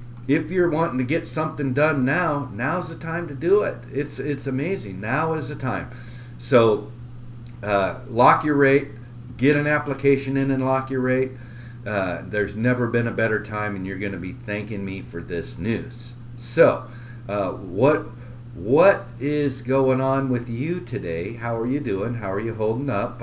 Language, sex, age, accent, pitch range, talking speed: English, male, 50-69, American, 115-135 Hz, 180 wpm